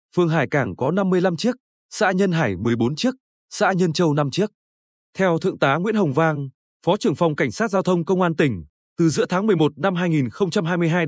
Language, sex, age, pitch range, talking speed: Vietnamese, male, 20-39, 150-195 Hz, 205 wpm